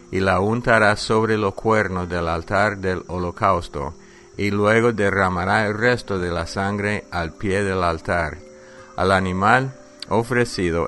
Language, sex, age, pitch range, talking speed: English, male, 50-69, 85-105 Hz, 140 wpm